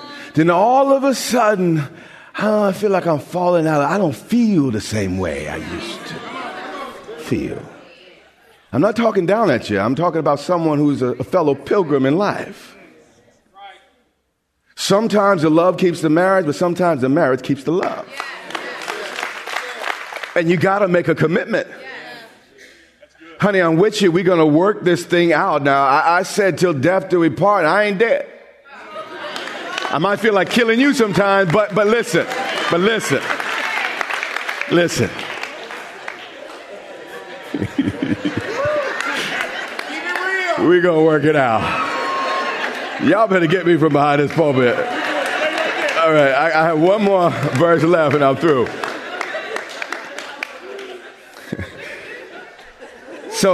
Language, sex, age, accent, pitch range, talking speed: English, male, 40-59, American, 160-210 Hz, 135 wpm